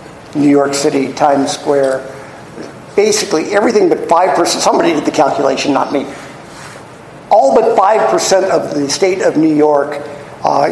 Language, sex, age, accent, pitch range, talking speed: English, male, 50-69, American, 150-210 Hz, 140 wpm